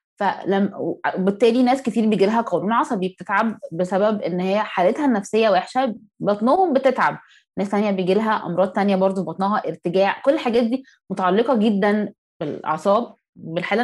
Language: Arabic